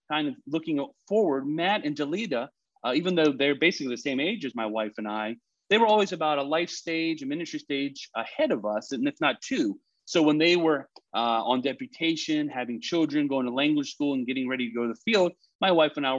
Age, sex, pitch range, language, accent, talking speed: 30-49, male, 130-165 Hz, English, American, 230 wpm